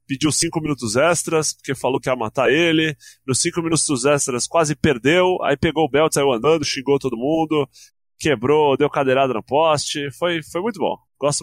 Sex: male